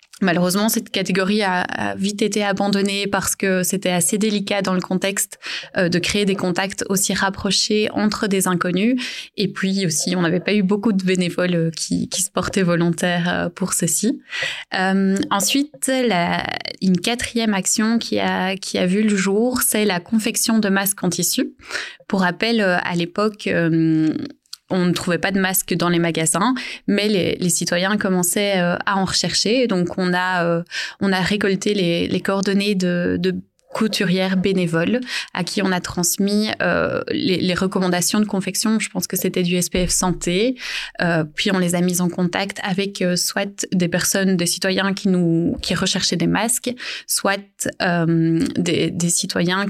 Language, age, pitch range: French, 20-39, 180-205 Hz